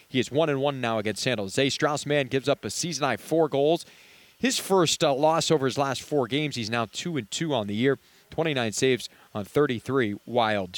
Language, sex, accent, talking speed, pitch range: English, male, American, 225 wpm, 115-160 Hz